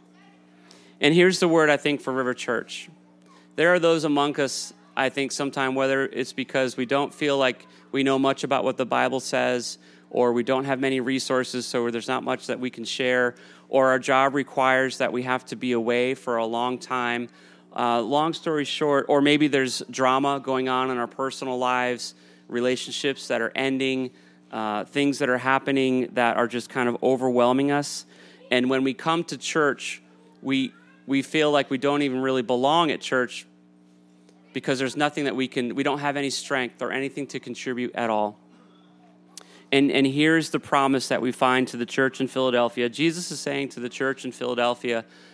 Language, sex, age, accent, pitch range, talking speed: English, male, 30-49, American, 120-140 Hz, 190 wpm